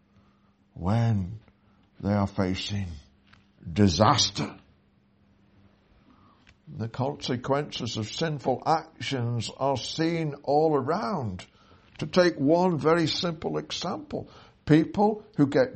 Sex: male